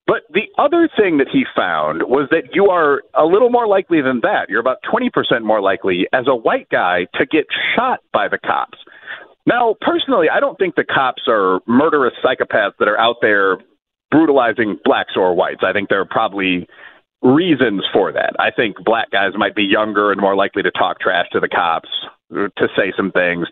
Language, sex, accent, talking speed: English, male, American, 200 wpm